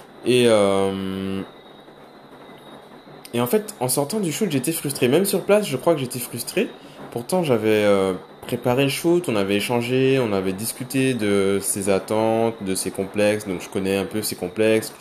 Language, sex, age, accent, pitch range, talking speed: French, male, 20-39, French, 100-135 Hz, 170 wpm